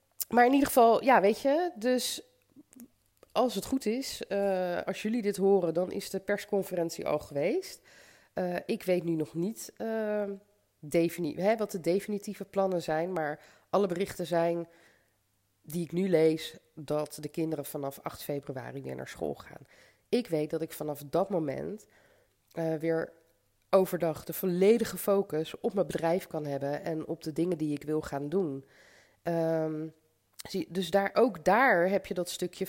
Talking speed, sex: 160 wpm, female